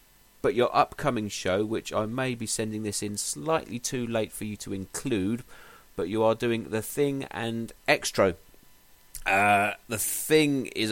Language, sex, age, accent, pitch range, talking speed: English, male, 30-49, British, 95-115 Hz, 165 wpm